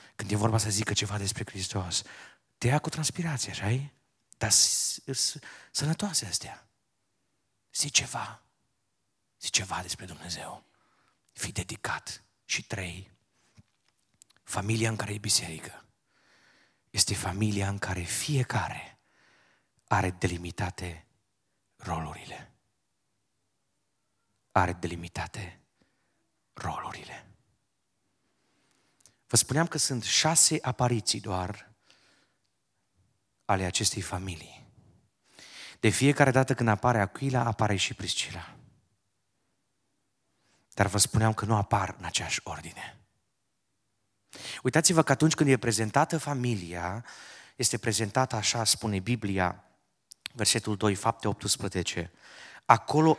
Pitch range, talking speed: 95-125 Hz, 100 wpm